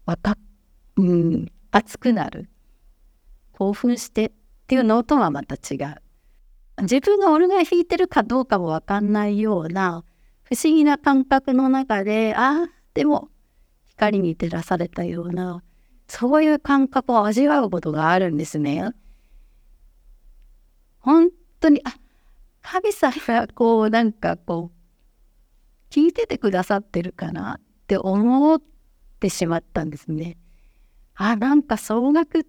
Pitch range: 175-280 Hz